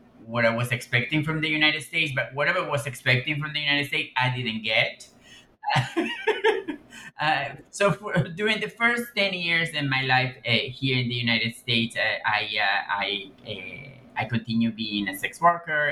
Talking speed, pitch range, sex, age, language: 165 wpm, 110-140 Hz, male, 30-49, English